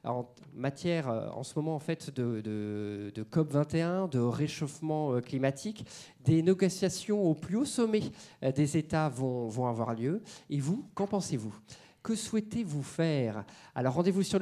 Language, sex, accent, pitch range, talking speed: French, male, French, 135-185 Hz, 165 wpm